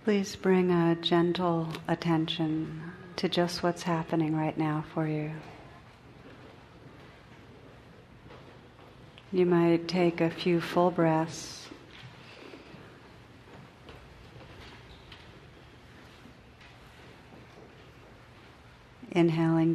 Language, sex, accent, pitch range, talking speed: English, female, American, 155-170 Hz, 65 wpm